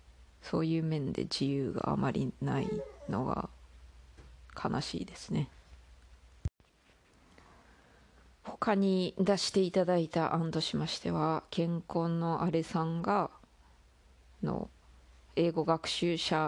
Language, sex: Japanese, female